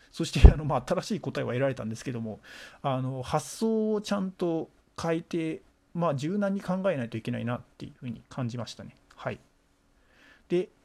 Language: Japanese